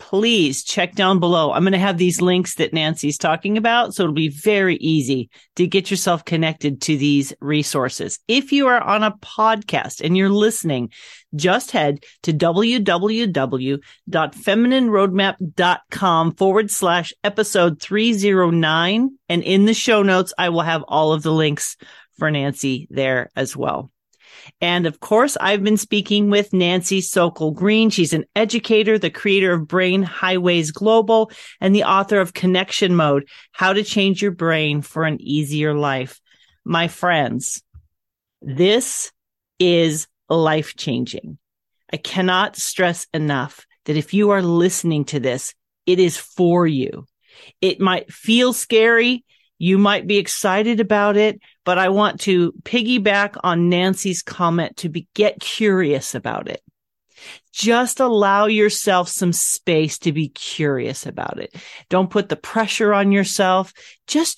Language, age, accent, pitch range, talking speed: English, 40-59, American, 160-210 Hz, 145 wpm